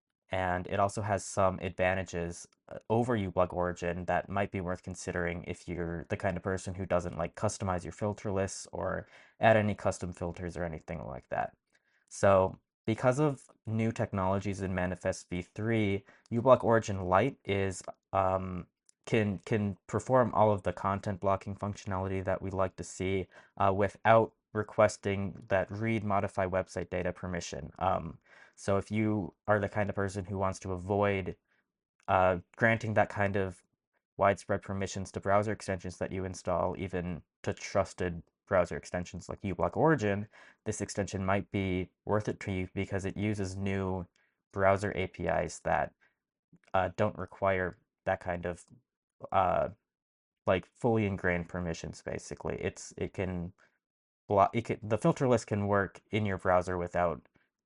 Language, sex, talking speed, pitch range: English, male, 155 wpm, 90-105 Hz